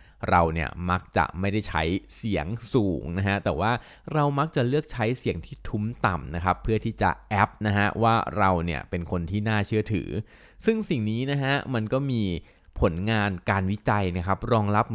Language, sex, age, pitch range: Thai, male, 20-39, 90-110 Hz